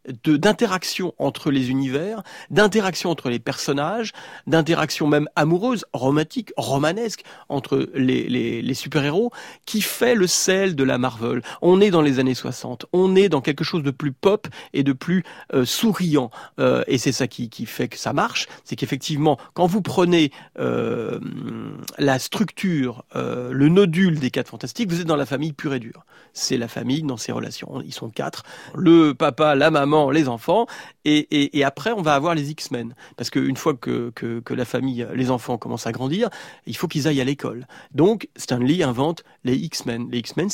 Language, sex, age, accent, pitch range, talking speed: French, male, 40-59, French, 130-175 Hz, 190 wpm